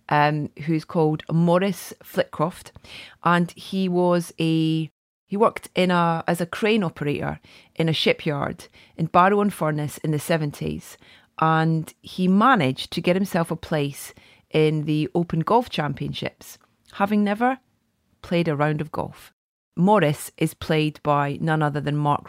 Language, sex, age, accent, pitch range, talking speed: English, female, 30-49, British, 145-175 Hz, 150 wpm